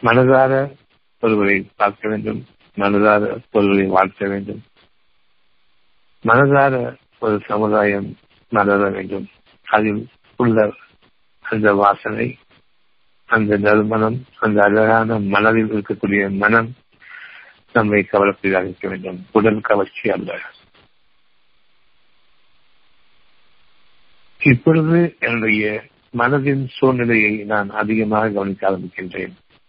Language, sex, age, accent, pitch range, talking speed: Tamil, male, 50-69, native, 100-120 Hz, 65 wpm